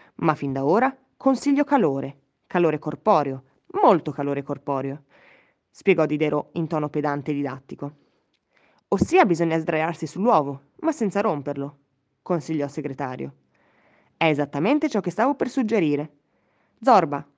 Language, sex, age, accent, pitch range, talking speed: Italian, female, 20-39, native, 150-215 Hz, 125 wpm